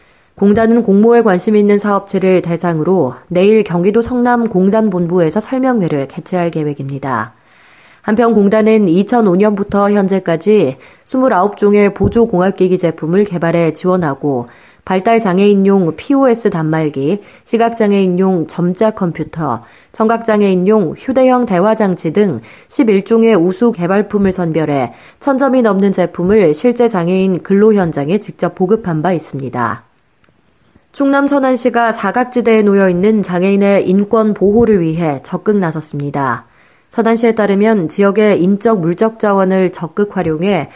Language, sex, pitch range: Korean, female, 170-215 Hz